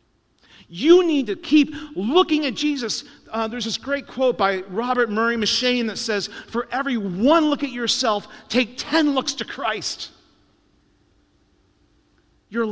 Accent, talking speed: American, 140 wpm